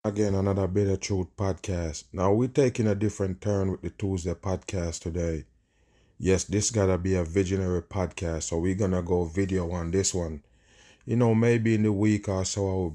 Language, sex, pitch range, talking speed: English, male, 85-100 Hz, 190 wpm